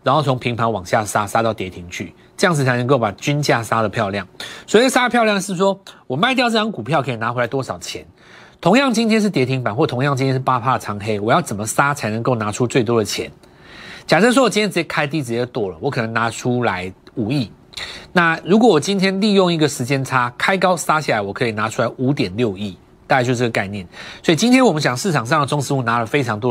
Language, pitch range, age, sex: Chinese, 115-165 Hz, 30-49, male